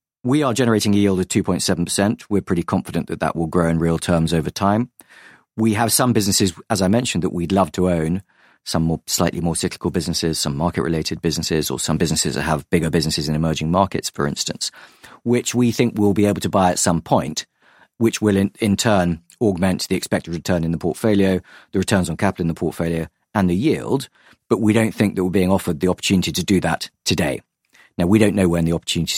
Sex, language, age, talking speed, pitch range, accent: male, English, 40-59, 220 wpm, 85-100 Hz, British